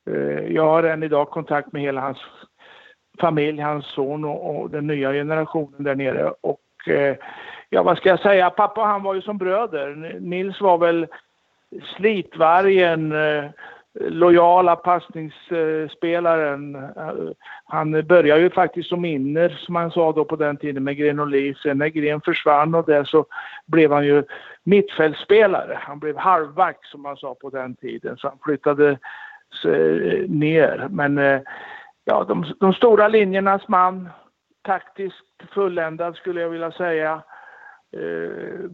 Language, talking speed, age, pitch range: English, 140 wpm, 60-79, 145-180 Hz